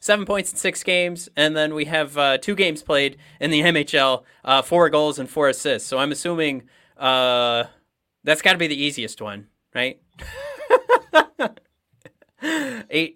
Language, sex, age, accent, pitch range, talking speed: English, male, 30-49, American, 120-155 Hz, 160 wpm